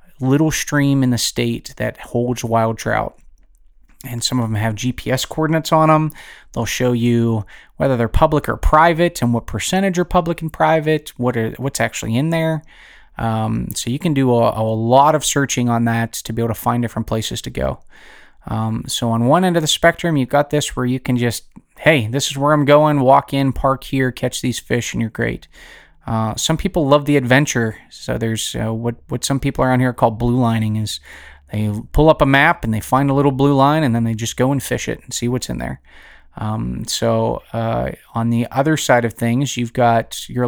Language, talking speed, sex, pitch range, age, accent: English, 215 wpm, male, 115-140 Hz, 20-39, American